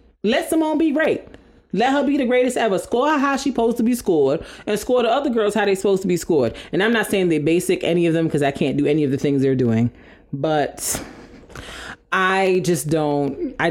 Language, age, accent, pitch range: English, 30-49, American, 140-205 Hz